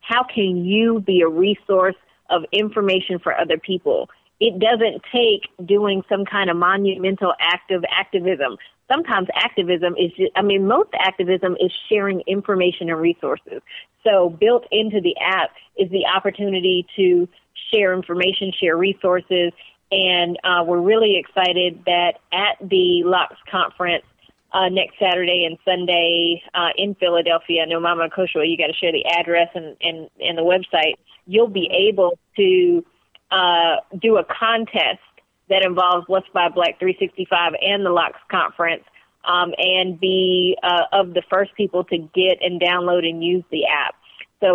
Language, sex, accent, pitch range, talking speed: English, female, American, 175-200 Hz, 155 wpm